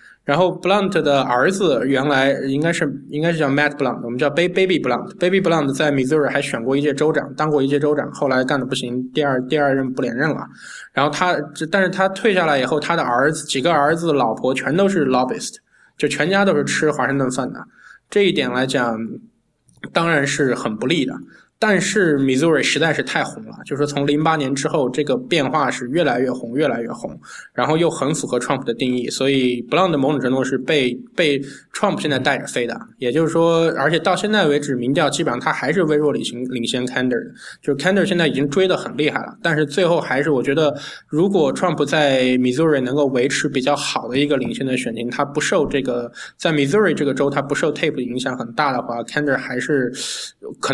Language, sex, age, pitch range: Chinese, male, 20-39, 130-160 Hz